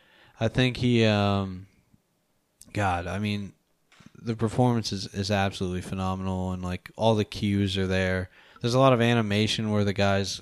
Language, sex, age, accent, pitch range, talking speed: English, male, 20-39, American, 95-115 Hz, 160 wpm